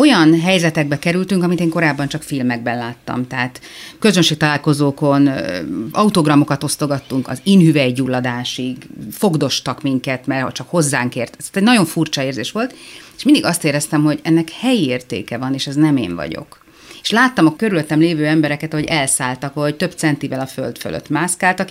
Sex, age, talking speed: female, 30-49, 150 wpm